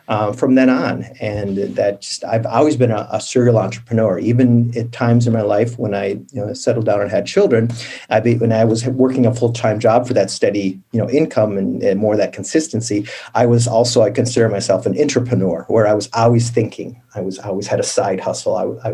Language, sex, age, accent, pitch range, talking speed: English, male, 40-59, American, 105-125 Hz, 225 wpm